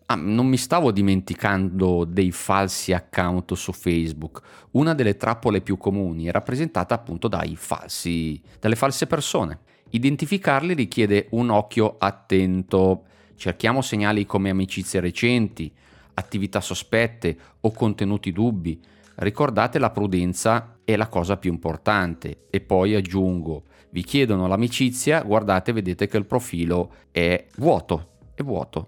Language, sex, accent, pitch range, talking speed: Italian, male, native, 90-110 Hz, 120 wpm